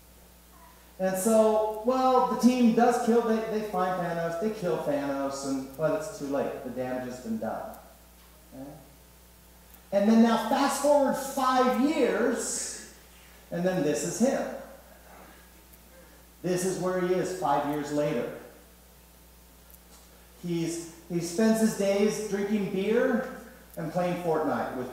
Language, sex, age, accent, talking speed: English, male, 50-69, American, 135 wpm